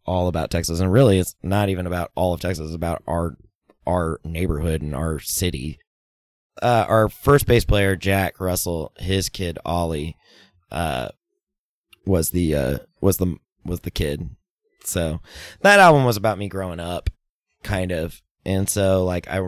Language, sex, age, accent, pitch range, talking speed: English, male, 20-39, American, 80-105 Hz, 165 wpm